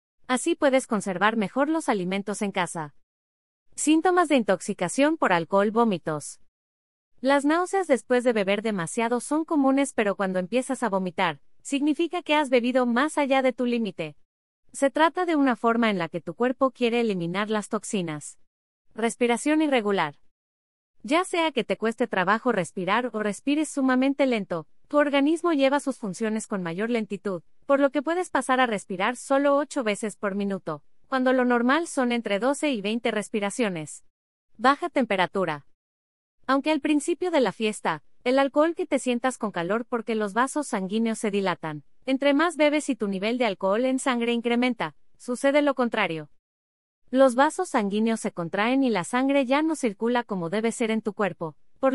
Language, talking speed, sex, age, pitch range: Spanish, 165 wpm, female, 30-49, 190-275 Hz